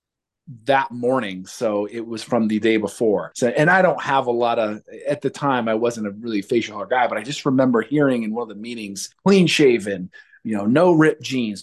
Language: English